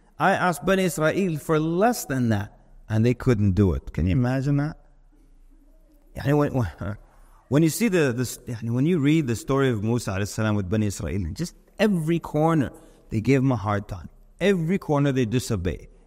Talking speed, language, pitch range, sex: 170 wpm, English, 120-160 Hz, male